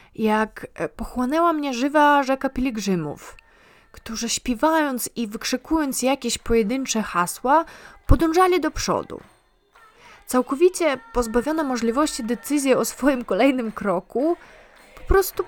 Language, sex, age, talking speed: Polish, female, 20-39, 100 wpm